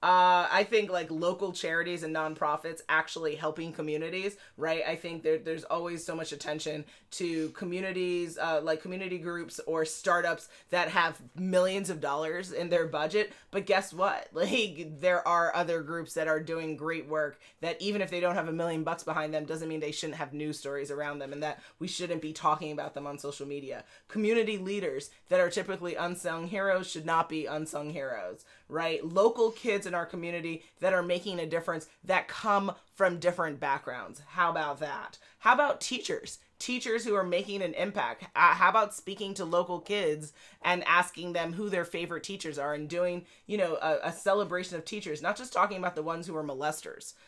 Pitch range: 155-185 Hz